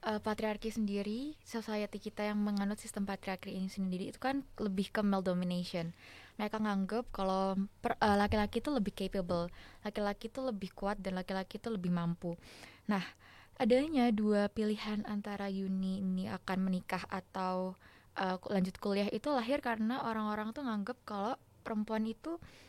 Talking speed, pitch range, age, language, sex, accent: 150 wpm, 190-220 Hz, 20-39, Indonesian, female, native